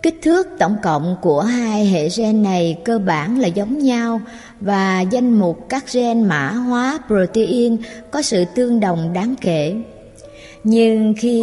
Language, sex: Vietnamese, male